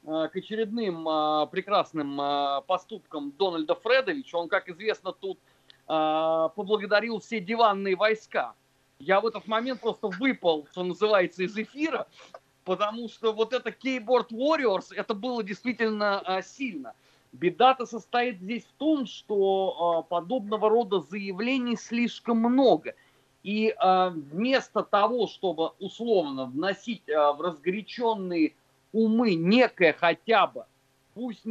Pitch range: 175-235 Hz